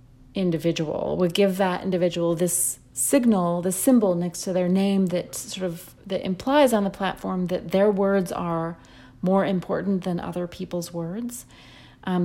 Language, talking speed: English, 155 wpm